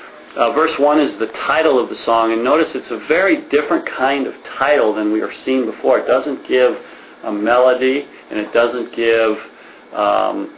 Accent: American